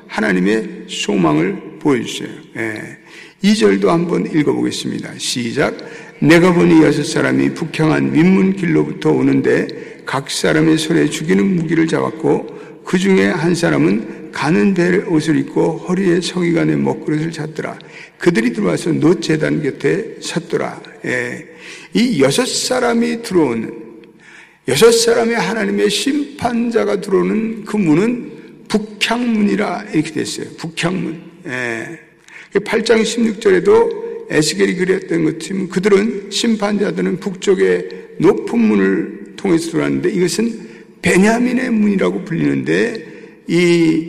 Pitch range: 165-225 Hz